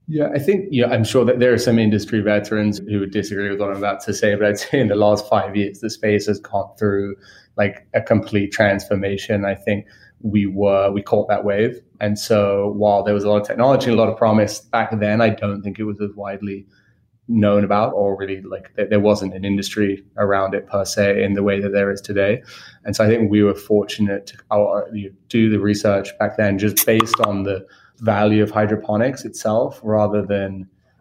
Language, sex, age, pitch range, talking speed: English, male, 20-39, 100-110 Hz, 225 wpm